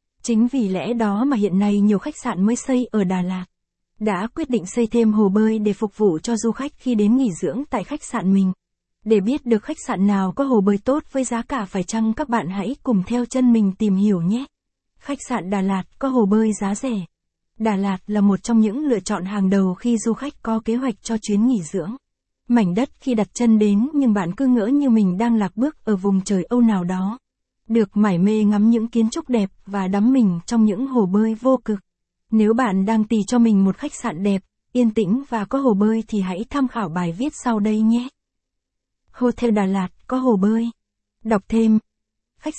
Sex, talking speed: female, 230 wpm